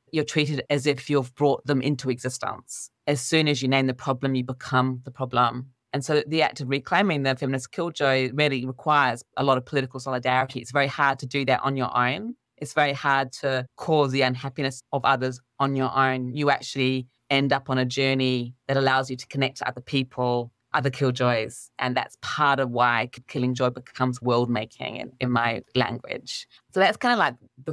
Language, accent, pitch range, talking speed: English, British, 130-150 Hz, 200 wpm